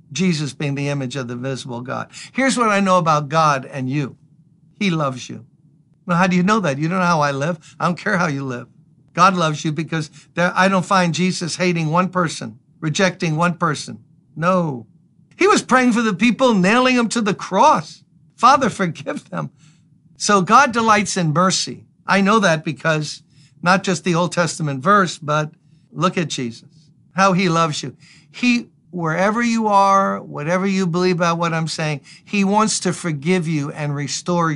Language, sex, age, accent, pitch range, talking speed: English, male, 60-79, American, 150-185 Hz, 185 wpm